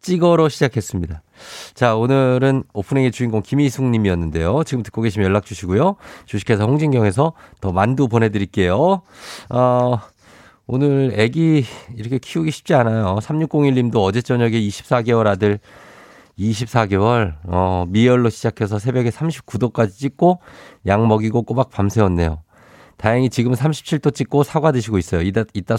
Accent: native